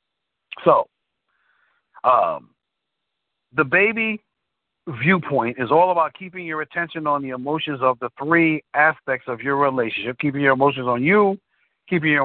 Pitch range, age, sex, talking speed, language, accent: 135-180 Hz, 50-69, male, 135 wpm, English, American